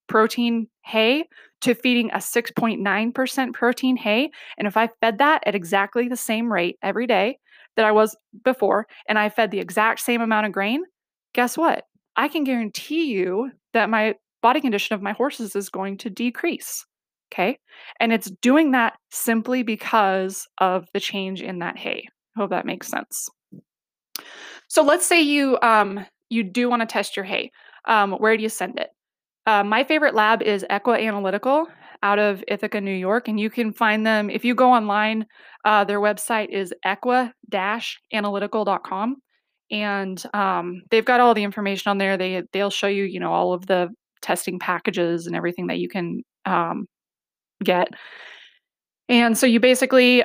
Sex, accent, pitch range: female, American, 200-245 Hz